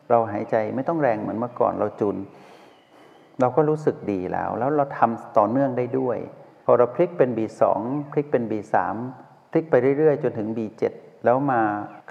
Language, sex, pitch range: Thai, male, 105-135 Hz